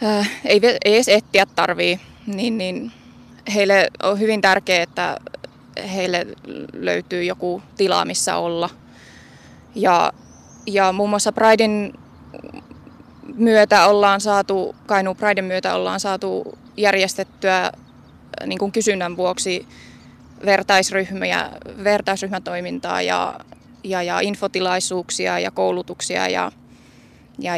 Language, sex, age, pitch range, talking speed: Finnish, female, 20-39, 180-205 Hz, 100 wpm